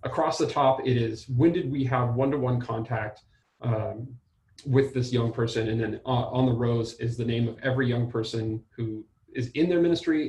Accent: American